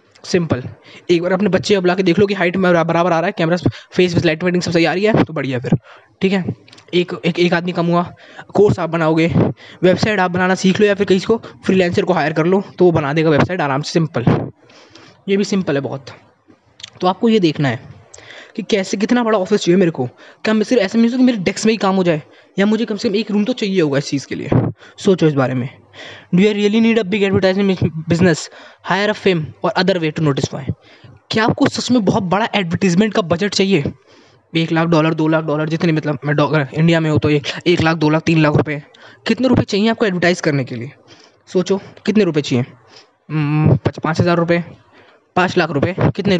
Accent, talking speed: native, 225 wpm